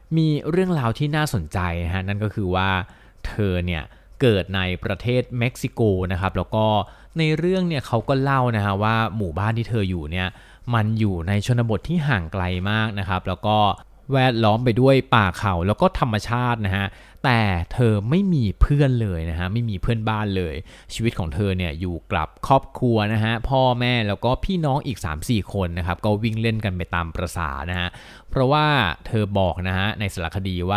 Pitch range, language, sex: 95-130 Hz, Thai, male